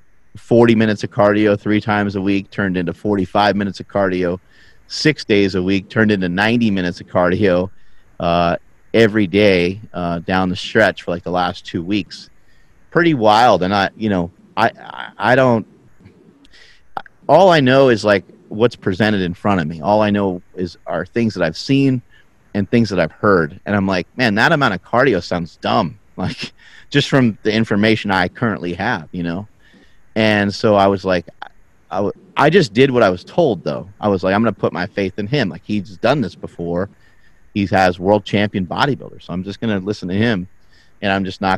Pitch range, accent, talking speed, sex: 90-115 Hz, American, 200 wpm, male